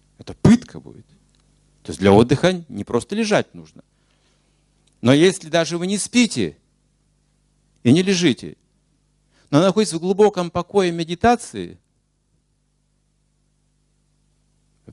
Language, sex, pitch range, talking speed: Russian, male, 115-185 Hz, 110 wpm